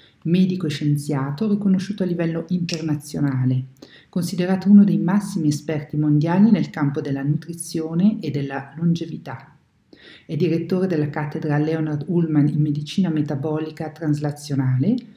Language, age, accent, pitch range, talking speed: Italian, 50-69, native, 150-185 Hz, 120 wpm